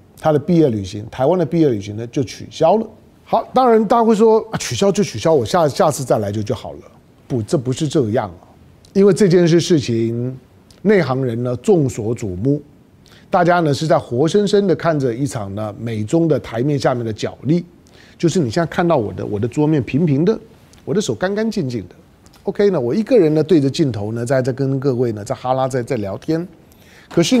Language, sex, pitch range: Chinese, male, 125-175 Hz